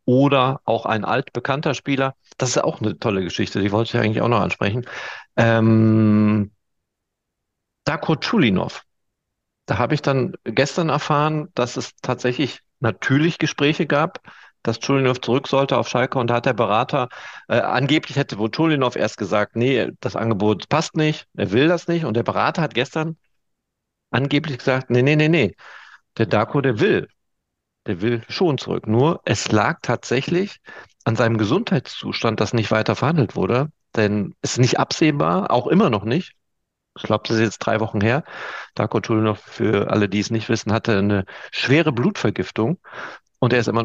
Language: German